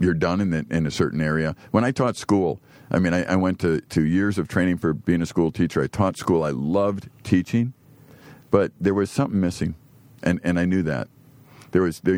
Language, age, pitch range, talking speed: English, 50-69, 85-110 Hz, 225 wpm